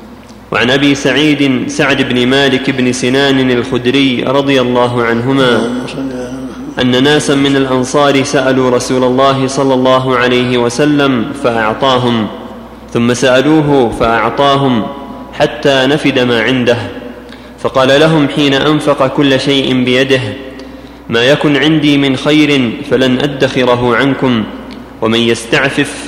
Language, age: Arabic, 30-49